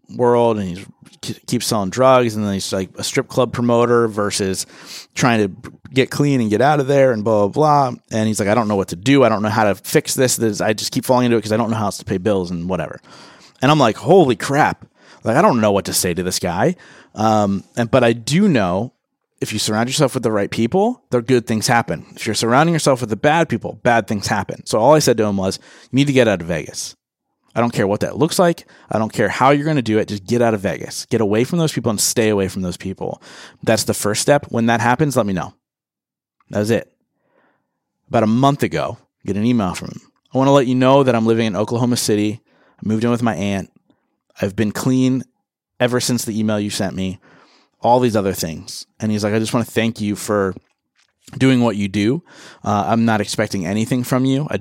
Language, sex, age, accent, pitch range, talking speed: English, male, 30-49, American, 105-130 Hz, 250 wpm